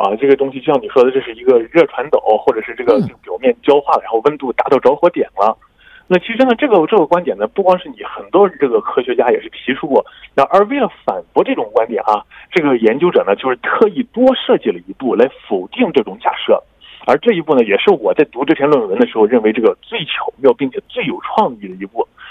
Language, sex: Korean, male